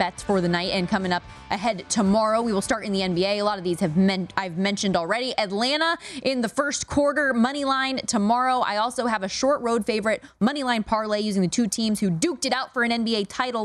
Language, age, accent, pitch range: English, 20-39, American, 190-260 Hz